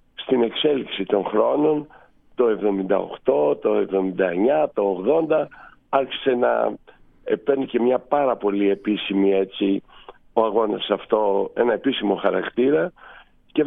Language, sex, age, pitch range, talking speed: Greek, male, 50-69, 100-135 Hz, 115 wpm